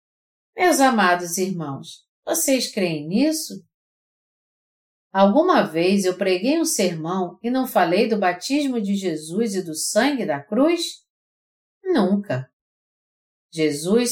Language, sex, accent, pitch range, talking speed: Portuguese, female, Brazilian, 165-260 Hz, 110 wpm